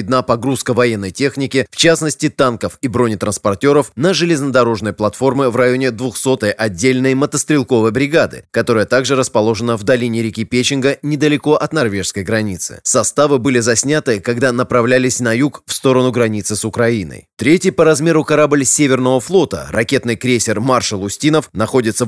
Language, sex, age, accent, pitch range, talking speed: Russian, male, 20-39, native, 110-140 Hz, 140 wpm